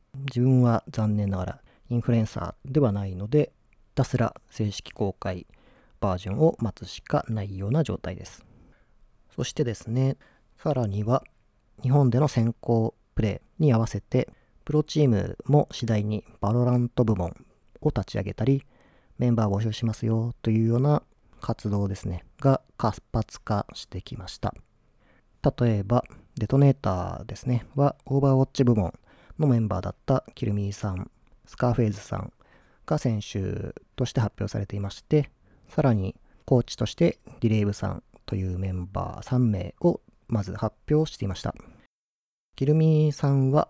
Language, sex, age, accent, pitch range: Japanese, male, 40-59, native, 100-135 Hz